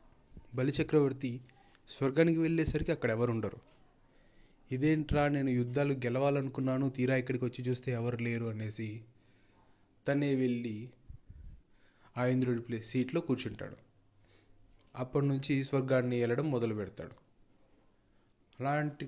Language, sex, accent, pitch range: Telugu, male, native, 115-140 Hz